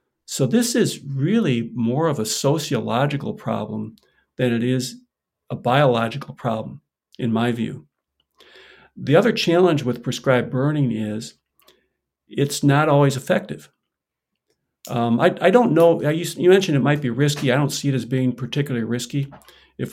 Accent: American